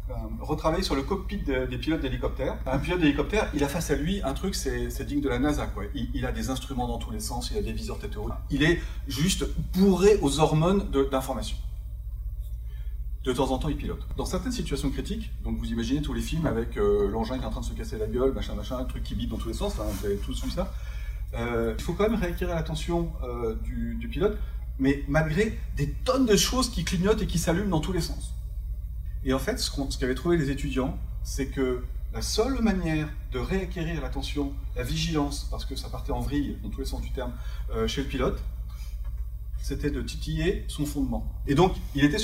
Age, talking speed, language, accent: 40-59, 230 wpm, French, French